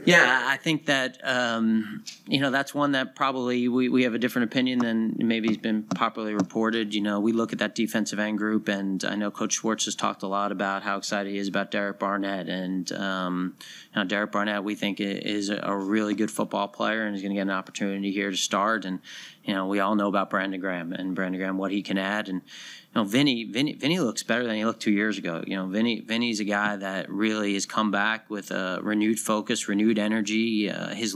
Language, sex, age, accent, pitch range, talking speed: English, male, 30-49, American, 100-115 Hz, 235 wpm